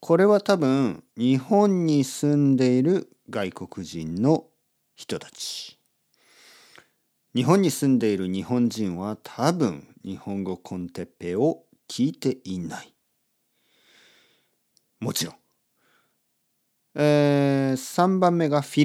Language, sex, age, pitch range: Japanese, male, 40-59, 100-145 Hz